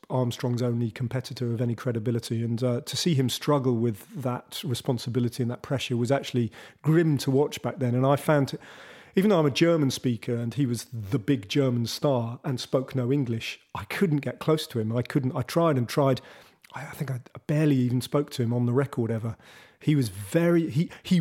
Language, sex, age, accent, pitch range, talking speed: English, male, 40-59, British, 120-145 Hz, 210 wpm